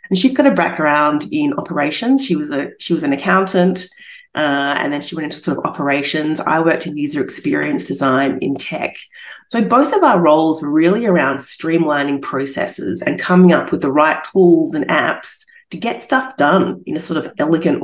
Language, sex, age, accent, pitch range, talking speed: English, female, 30-49, Australian, 160-230 Hz, 200 wpm